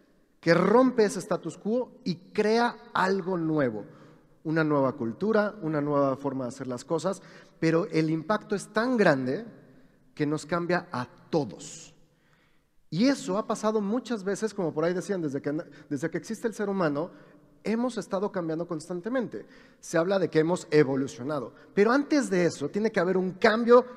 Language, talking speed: Spanish, 165 wpm